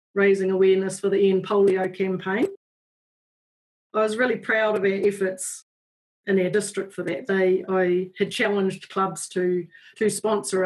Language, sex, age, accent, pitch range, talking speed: English, female, 40-59, Australian, 185-205 Hz, 150 wpm